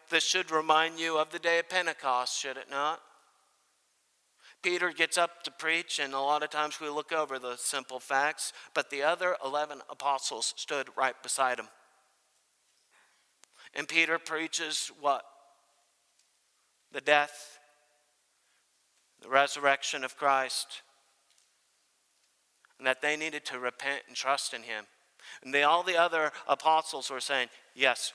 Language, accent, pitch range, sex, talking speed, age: English, American, 135-160 Hz, male, 140 wpm, 50-69